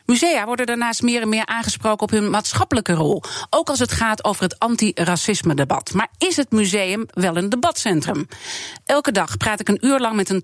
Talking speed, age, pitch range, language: 200 wpm, 40-59, 185-250 Hz, Dutch